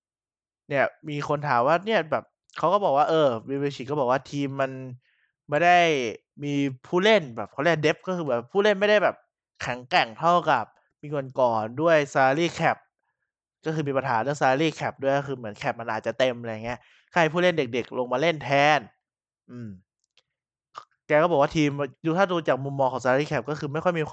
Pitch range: 120-155 Hz